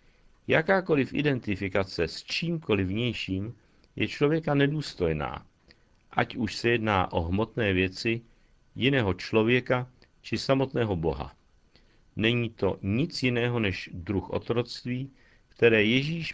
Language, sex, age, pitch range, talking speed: Czech, male, 50-69, 95-130 Hz, 105 wpm